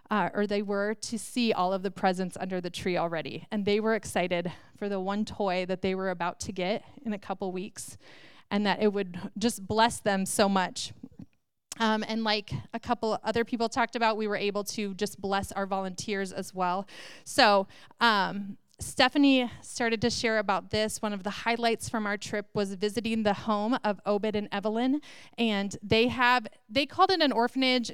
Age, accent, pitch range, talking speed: 30-49, American, 195-230 Hz, 195 wpm